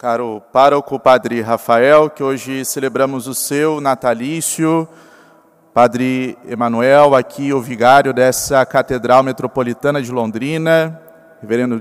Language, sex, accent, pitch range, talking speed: Portuguese, male, Brazilian, 150-185 Hz, 105 wpm